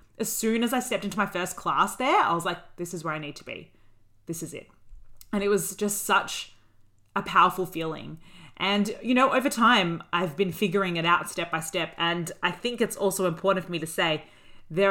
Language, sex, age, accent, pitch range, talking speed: English, female, 30-49, Australian, 165-210 Hz, 220 wpm